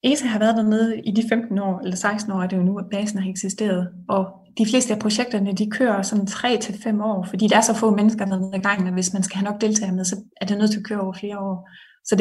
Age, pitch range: 20-39, 195-225 Hz